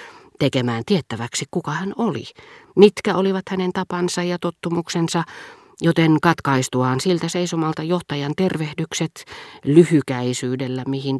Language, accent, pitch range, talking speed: Finnish, native, 120-160 Hz, 100 wpm